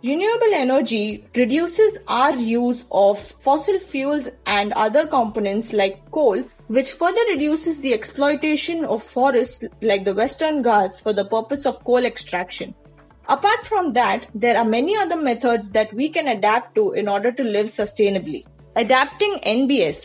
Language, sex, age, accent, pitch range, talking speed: English, female, 20-39, Indian, 215-295 Hz, 150 wpm